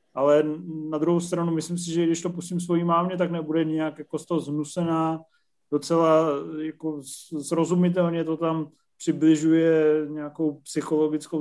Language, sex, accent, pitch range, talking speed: Czech, male, native, 145-160 Hz, 140 wpm